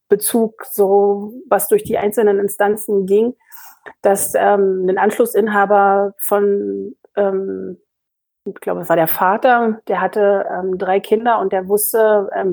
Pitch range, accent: 185-210 Hz, German